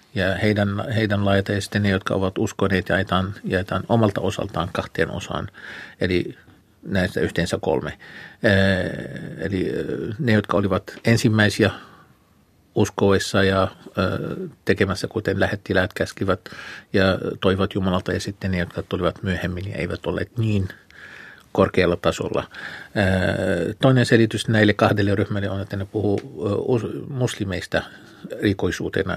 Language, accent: Finnish, native